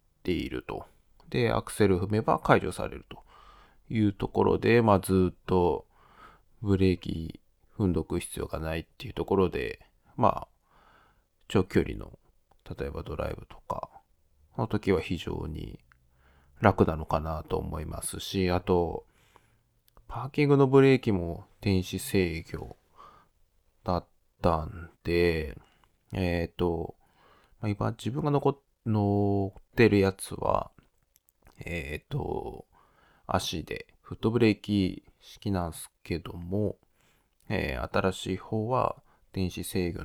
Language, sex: Japanese, male